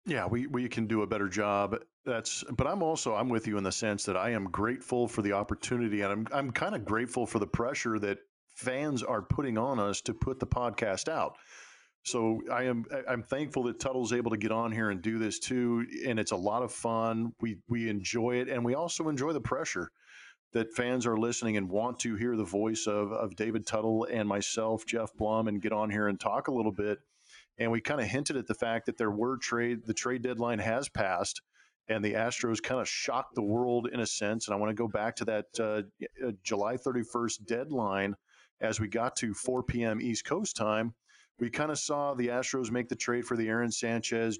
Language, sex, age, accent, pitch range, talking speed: English, male, 40-59, American, 110-120 Hz, 225 wpm